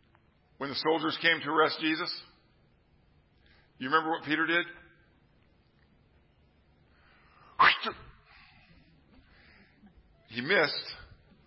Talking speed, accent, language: 75 wpm, American, English